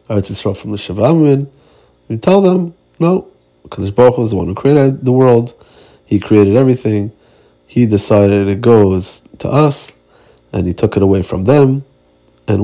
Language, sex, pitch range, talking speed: Hebrew, male, 95-120 Hz, 170 wpm